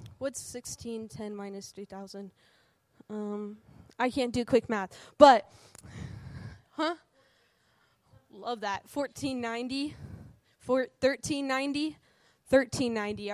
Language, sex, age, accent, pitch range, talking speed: English, female, 10-29, American, 210-255 Hz, 80 wpm